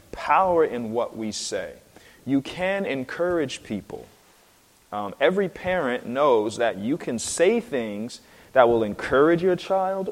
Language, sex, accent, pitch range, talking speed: English, male, American, 120-160 Hz, 135 wpm